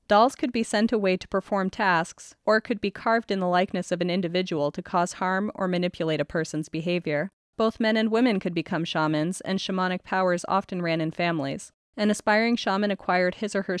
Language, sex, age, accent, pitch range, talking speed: English, female, 20-39, American, 175-215 Hz, 205 wpm